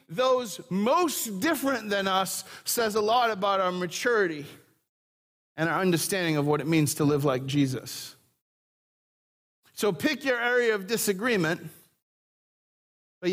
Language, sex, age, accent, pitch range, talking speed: English, male, 30-49, American, 165-220 Hz, 130 wpm